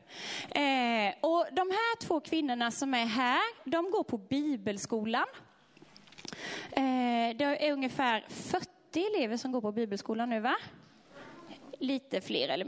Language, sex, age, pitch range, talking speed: Swedish, female, 20-39, 240-335 Hz, 125 wpm